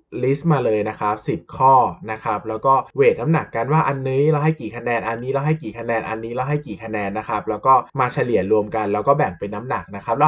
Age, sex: 20-39, male